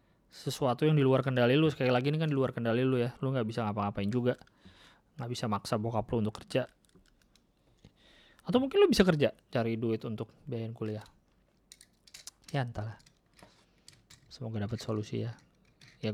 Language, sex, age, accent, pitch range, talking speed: Indonesian, male, 20-39, native, 115-150 Hz, 165 wpm